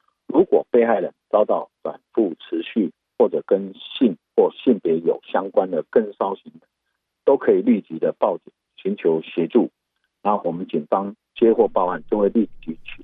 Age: 50-69